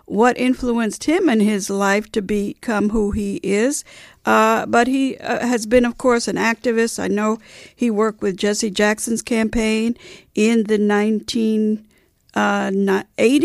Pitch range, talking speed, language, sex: 210-255 Hz, 145 wpm, English, female